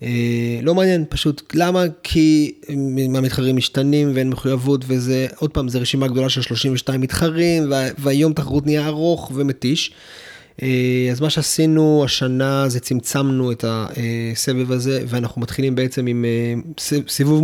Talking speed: 145 wpm